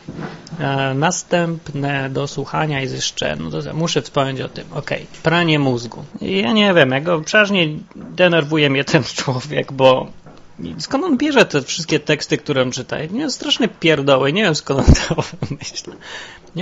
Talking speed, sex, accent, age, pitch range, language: 165 wpm, male, native, 30-49, 135-165 Hz, Polish